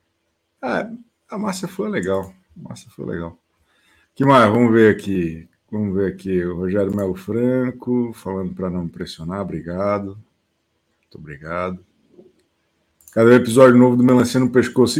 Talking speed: 140 wpm